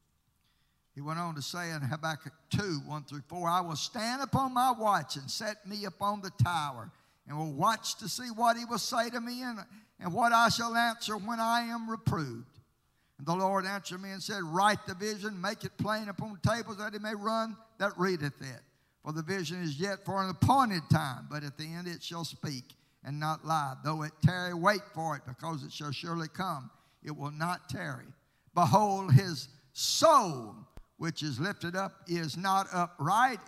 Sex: male